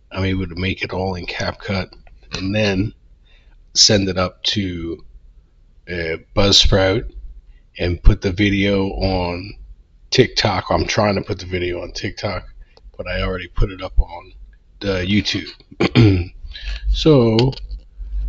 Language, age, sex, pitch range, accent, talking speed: English, 40-59, male, 85-110 Hz, American, 130 wpm